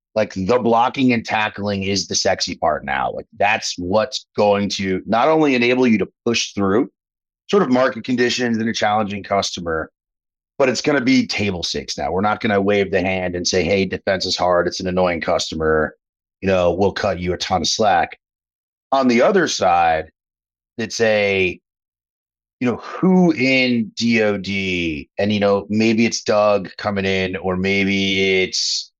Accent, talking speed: American, 180 wpm